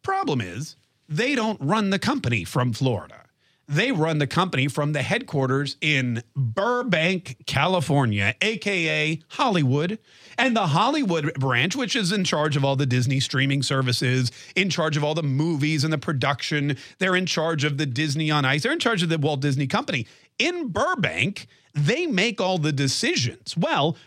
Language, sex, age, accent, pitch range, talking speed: English, male, 40-59, American, 135-180 Hz, 170 wpm